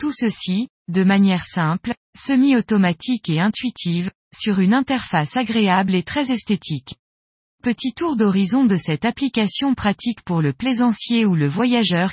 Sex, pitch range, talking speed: female, 180-245 Hz, 140 wpm